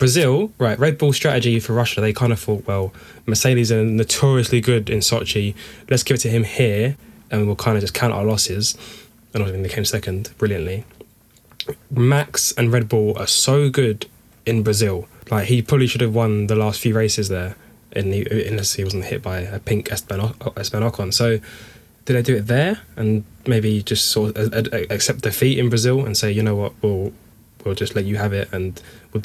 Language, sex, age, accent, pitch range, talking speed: English, male, 10-29, British, 105-120 Hz, 200 wpm